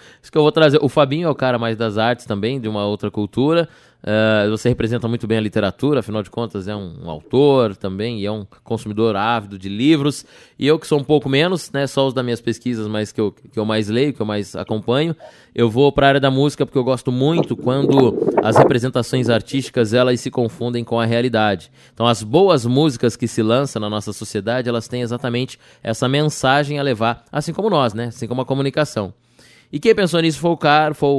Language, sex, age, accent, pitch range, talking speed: Portuguese, male, 20-39, Brazilian, 110-140 Hz, 225 wpm